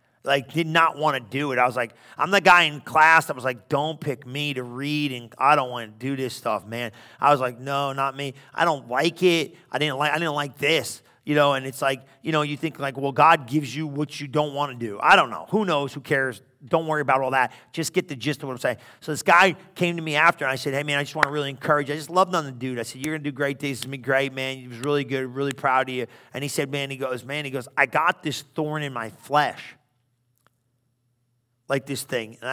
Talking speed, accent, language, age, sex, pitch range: 285 wpm, American, English, 40-59, male, 130-155 Hz